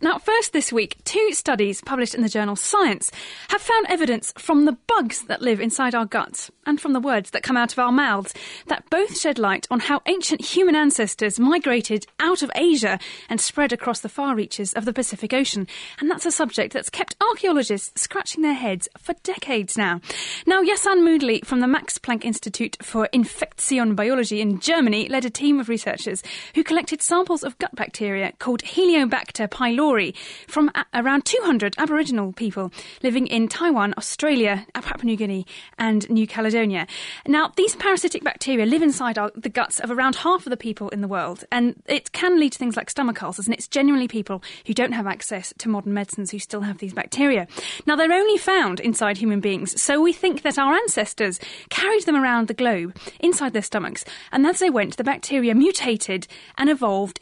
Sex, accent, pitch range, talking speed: female, British, 215-310 Hz, 190 wpm